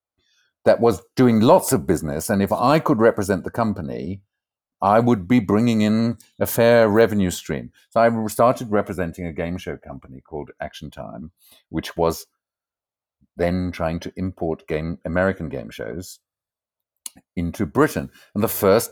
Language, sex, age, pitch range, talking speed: English, male, 50-69, 85-115 Hz, 150 wpm